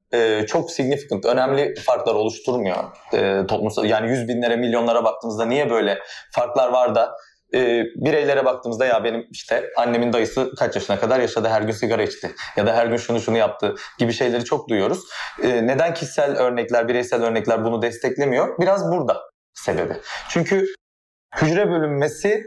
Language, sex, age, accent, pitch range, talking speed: Turkish, male, 30-49, native, 115-165 Hz, 160 wpm